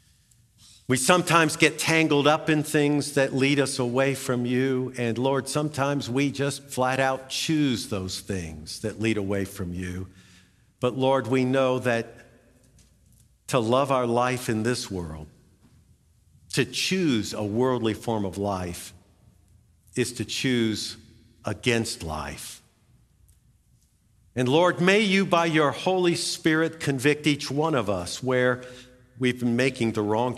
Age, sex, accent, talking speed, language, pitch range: 50-69, male, American, 140 wpm, English, 105-140 Hz